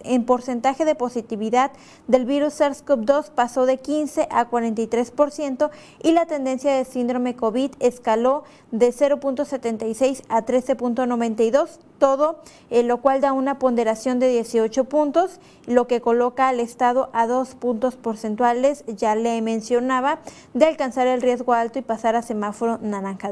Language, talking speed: Spanish, 140 wpm